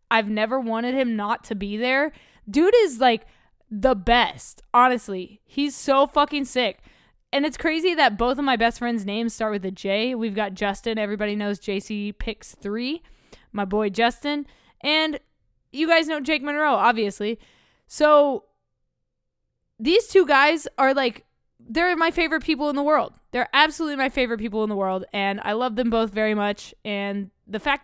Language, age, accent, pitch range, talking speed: English, 20-39, American, 215-285 Hz, 175 wpm